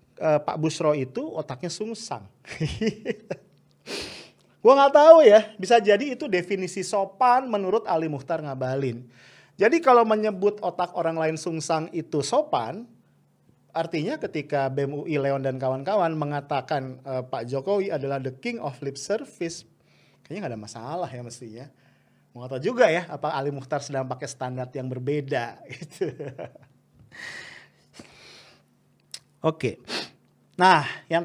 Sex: male